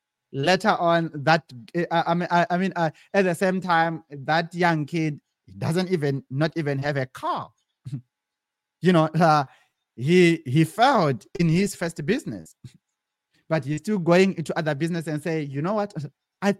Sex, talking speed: male, 165 wpm